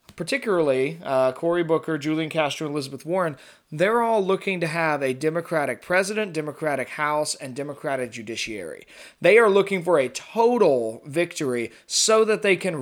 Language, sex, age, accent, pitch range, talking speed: English, male, 30-49, American, 145-185 Hz, 155 wpm